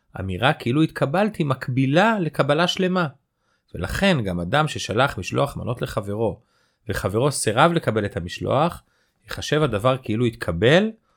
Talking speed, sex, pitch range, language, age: 120 wpm, male, 95-145 Hz, Hebrew, 40-59